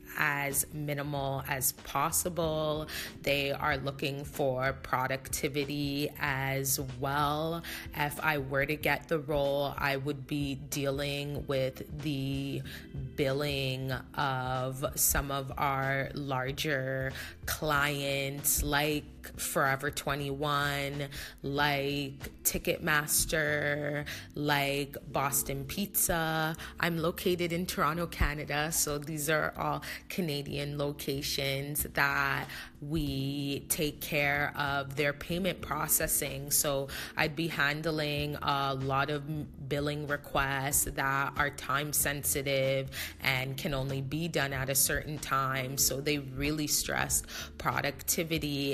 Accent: American